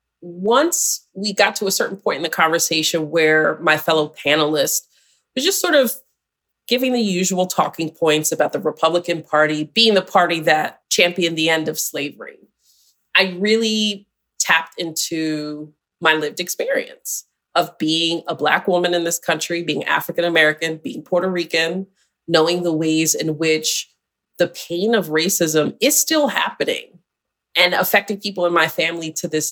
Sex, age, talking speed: female, 30-49, 155 wpm